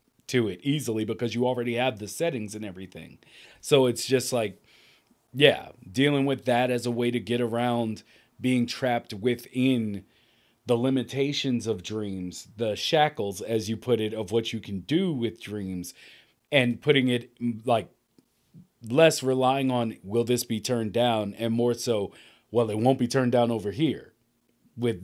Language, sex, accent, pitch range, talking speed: English, male, American, 110-135 Hz, 165 wpm